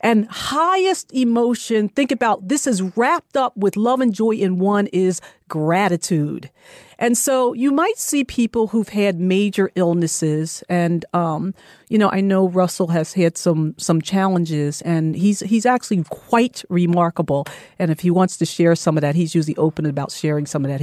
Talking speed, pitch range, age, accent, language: 180 wpm, 160-225 Hz, 40-59, American, English